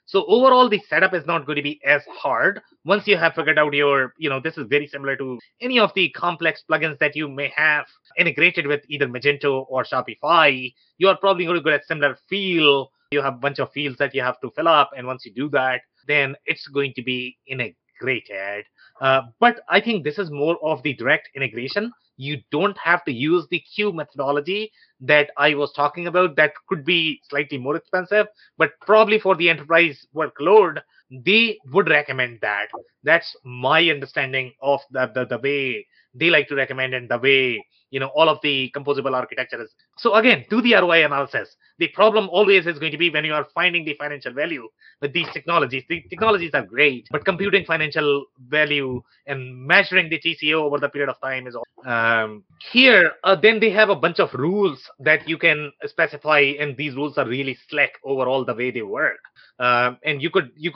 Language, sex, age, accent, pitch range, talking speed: English, male, 30-49, Indian, 135-170 Hz, 200 wpm